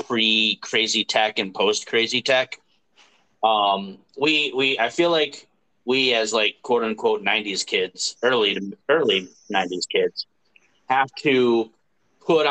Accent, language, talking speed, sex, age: American, English, 135 wpm, male, 30-49